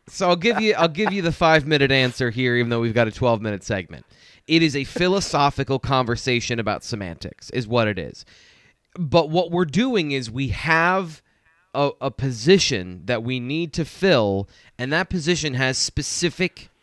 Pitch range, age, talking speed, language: 120-170 Hz, 20-39, 175 wpm, English